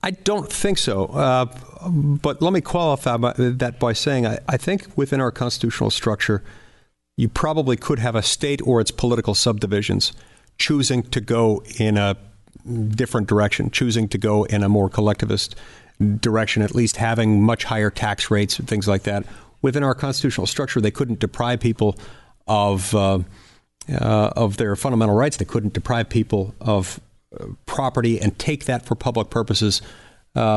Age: 50-69